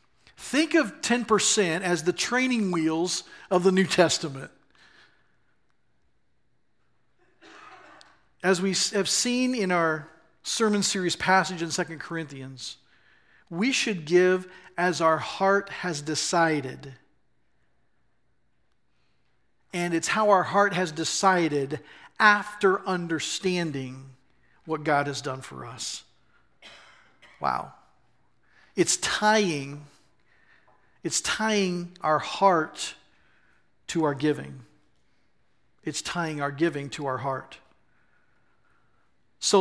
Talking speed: 95 wpm